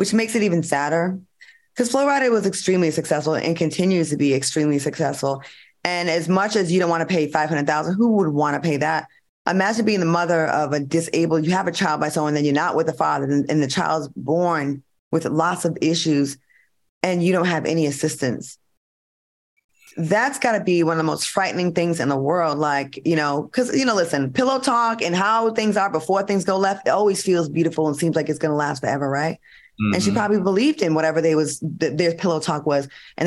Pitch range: 155-200 Hz